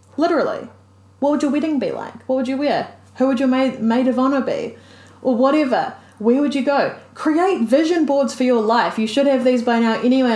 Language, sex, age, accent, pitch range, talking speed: English, female, 20-39, Australian, 220-275 Hz, 220 wpm